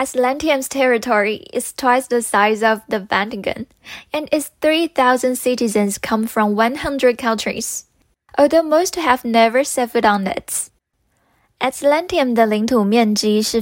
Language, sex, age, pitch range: Chinese, female, 10-29, 215-270 Hz